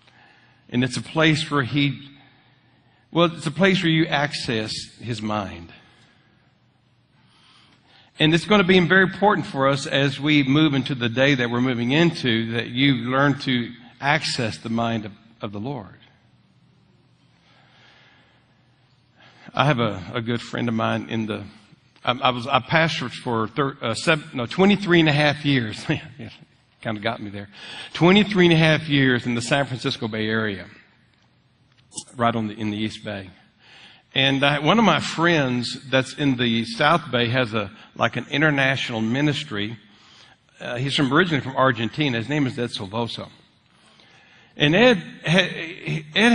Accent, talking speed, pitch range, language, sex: American, 155 wpm, 120-155 Hz, English, male